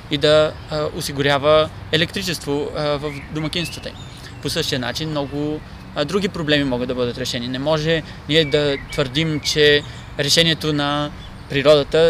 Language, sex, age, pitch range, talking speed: Bulgarian, male, 20-39, 135-150 Hz, 140 wpm